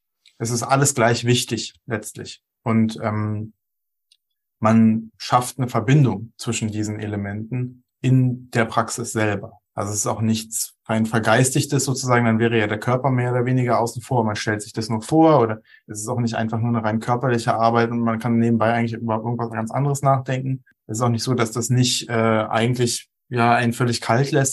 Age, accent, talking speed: 20-39, German, 195 wpm